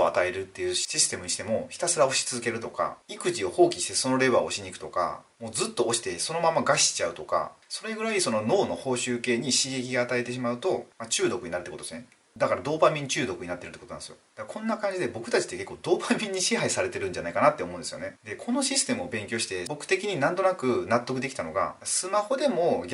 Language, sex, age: Japanese, male, 30-49